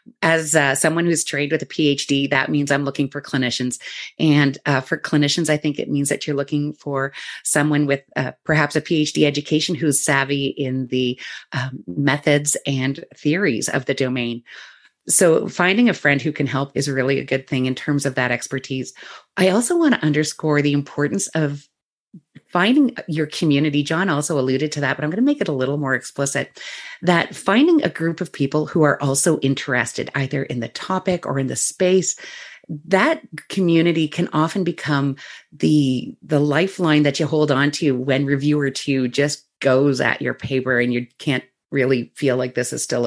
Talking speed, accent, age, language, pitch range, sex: 190 wpm, American, 30-49, English, 135-160 Hz, female